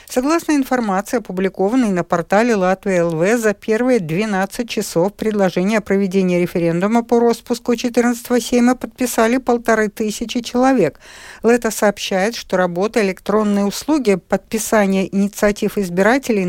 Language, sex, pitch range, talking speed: Russian, female, 190-240 Hz, 115 wpm